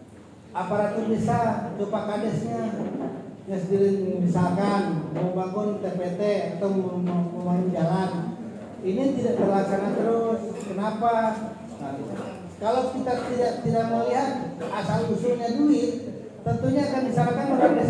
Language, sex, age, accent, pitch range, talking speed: Indonesian, male, 40-59, native, 170-230 Hz, 105 wpm